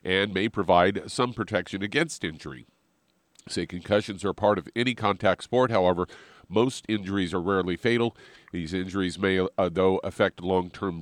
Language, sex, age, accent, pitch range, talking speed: English, male, 50-69, American, 90-110 Hz, 145 wpm